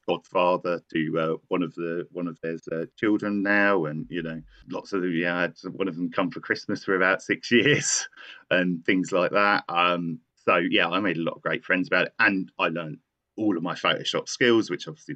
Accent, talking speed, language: British, 220 wpm, English